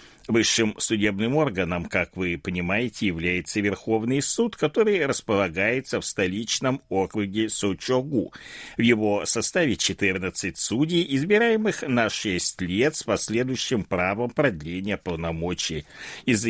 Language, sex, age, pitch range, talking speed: Russian, male, 60-79, 95-150 Hz, 110 wpm